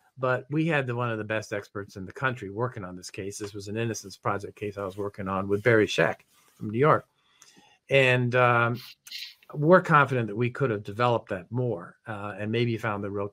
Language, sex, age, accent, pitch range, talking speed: English, male, 50-69, American, 105-130 Hz, 215 wpm